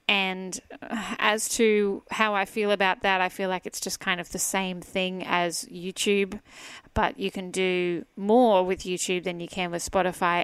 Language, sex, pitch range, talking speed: English, female, 185-225 Hz, 185 wpm